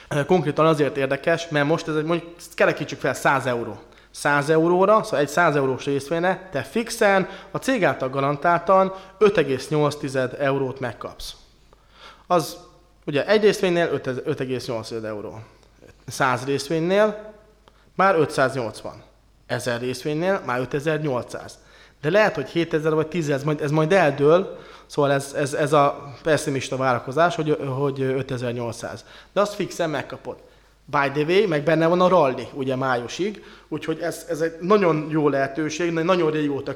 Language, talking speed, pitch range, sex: Hungarian, 140 wpm, 135-170 Hz, male